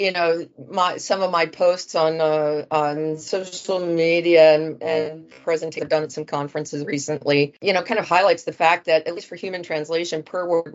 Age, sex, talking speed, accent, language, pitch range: 40-59, female, 200 wpm, American, English, 150-170 Hz